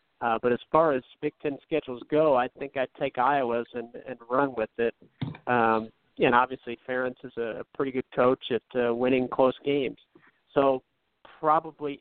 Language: English